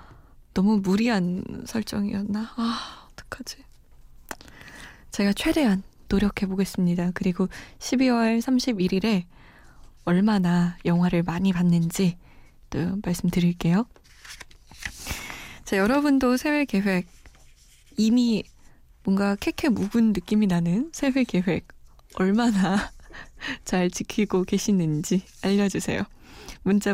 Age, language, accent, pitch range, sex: 20-39, Korean, native, 180-230 Hz, female